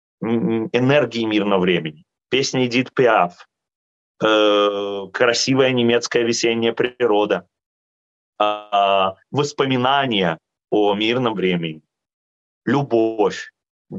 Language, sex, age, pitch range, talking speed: Russian, male, 30-49, 95-125 Hz, 65 wpm